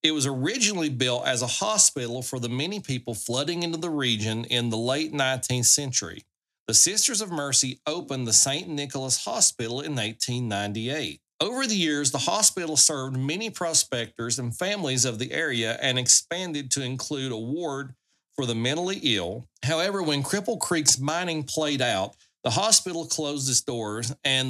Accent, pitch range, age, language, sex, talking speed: American, 120-160 Hz, 40-59, English, male, 165 wpm